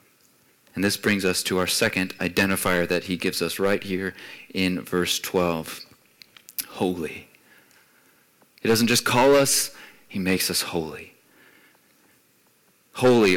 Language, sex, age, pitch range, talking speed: English, male, 30-49, 95-125 Hz, 125 wpm